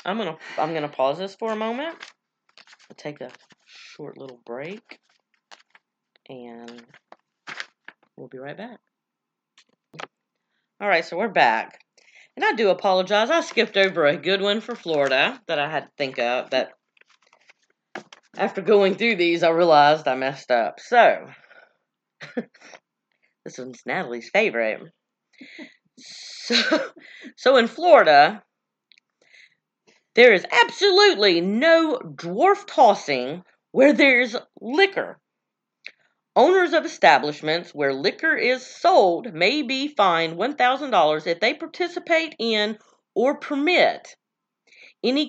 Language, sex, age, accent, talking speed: English, female, 40-59, American, 120 wpm